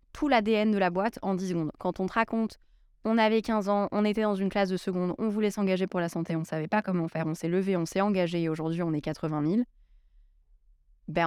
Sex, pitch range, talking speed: female, 160-195 Hz, 255 wpm